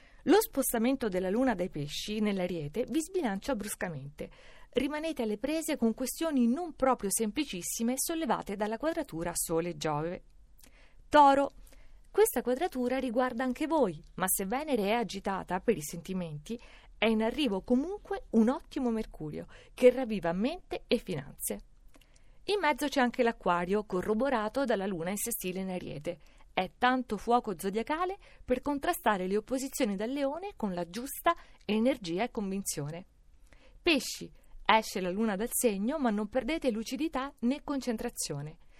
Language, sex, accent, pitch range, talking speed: Italian, female, native, 195-265 Hz, 140 wpm